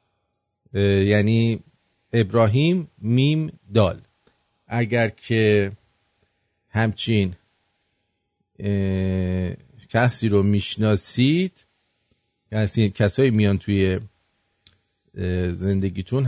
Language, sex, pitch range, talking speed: English, male, 100-120 Hz, 55 wpm